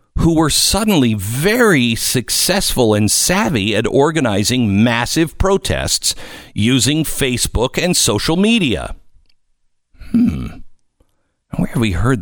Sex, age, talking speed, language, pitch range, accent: male, 50-69, 105 wpm, English, 115-175 Hz, American